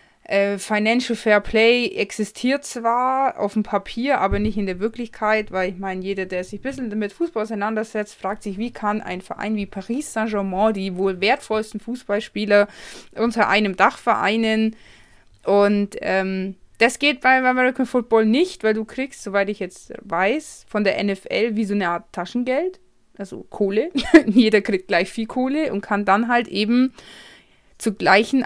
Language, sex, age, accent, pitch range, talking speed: German, female, 20-39, German, 195-225 Hz, 165 wpm